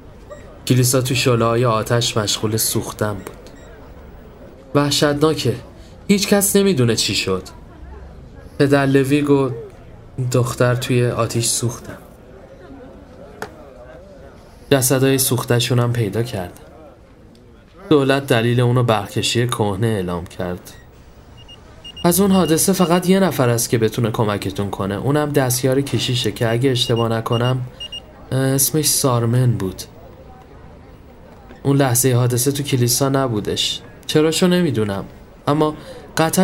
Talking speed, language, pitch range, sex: 100 wpm, Persian, 105-145 Hz, male